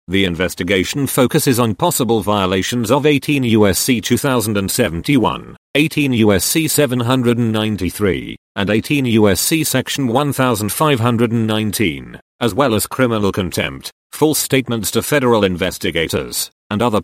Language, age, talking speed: English, 40-59, 105 wpm